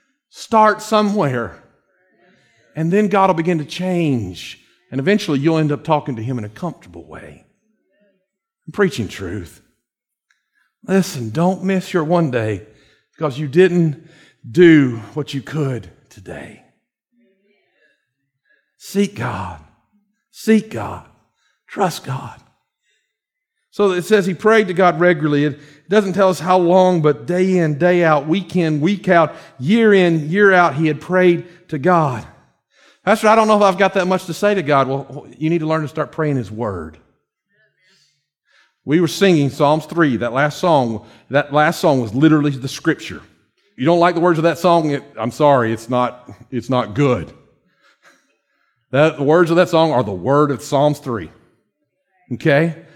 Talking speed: 160 wpm